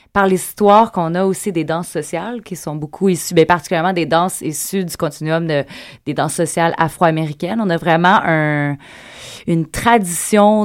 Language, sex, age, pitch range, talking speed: French, female, 30-49, 160-190 Hz, 170 wpm